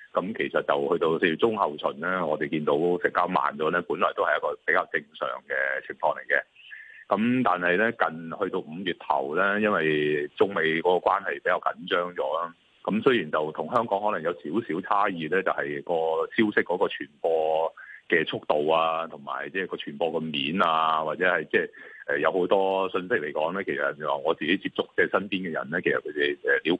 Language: Chinese